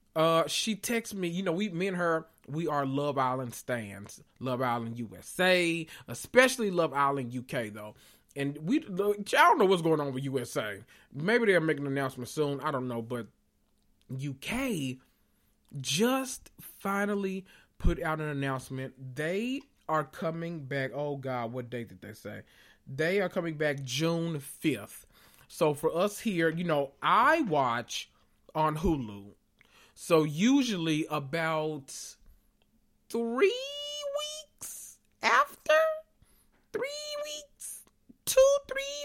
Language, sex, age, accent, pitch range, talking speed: English, male, 30-49, American, 135-195 Hz, 135 wpm